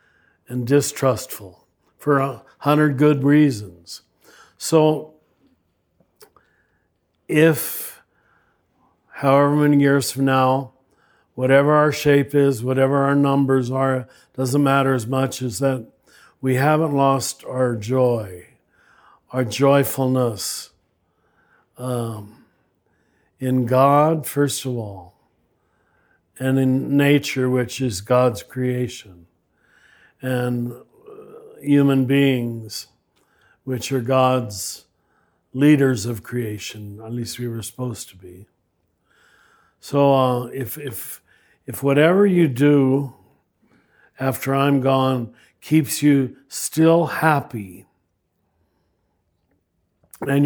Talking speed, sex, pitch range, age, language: 95 wpm, male, 120-140 Hz, 60-79, English